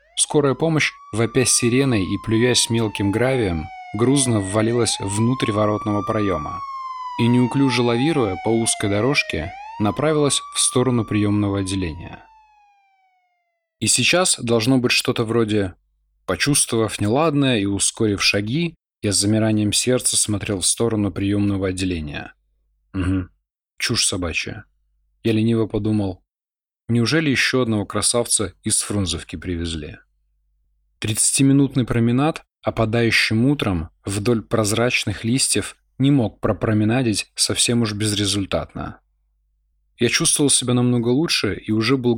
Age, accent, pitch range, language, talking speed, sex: 20-39, native, 100-130 Hz, Russian, 110 wpm, male